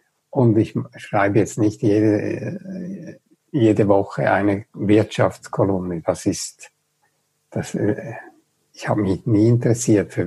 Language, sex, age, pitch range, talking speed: German, male, 60-79, 105-130 Hz, 110 wpm